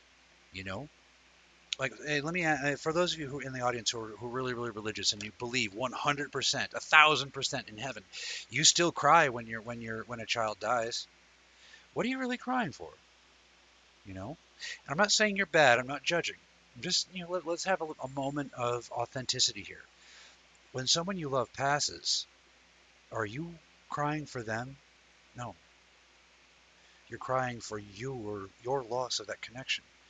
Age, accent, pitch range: 50-69, American, 110-150 Hz